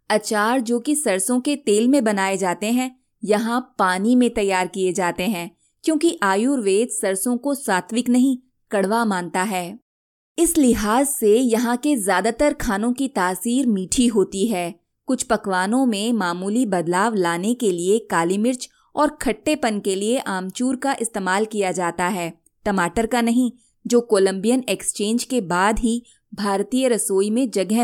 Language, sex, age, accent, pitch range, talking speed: Hindi, female, 20-39, native, 195-250 Hz, 155 wpm